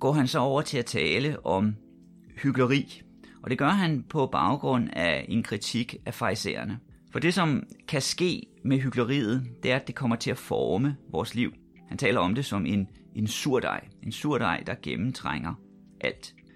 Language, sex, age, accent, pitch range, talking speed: Danish, male, 30-49, native, 110-140 Hz, 180 wpm